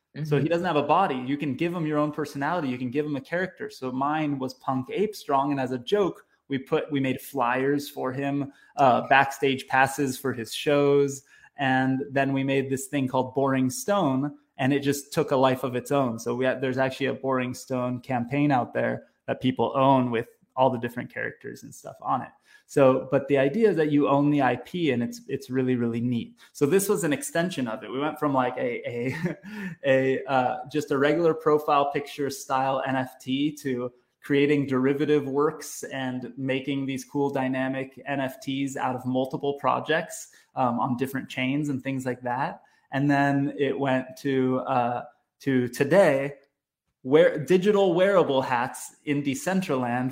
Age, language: 20-39, English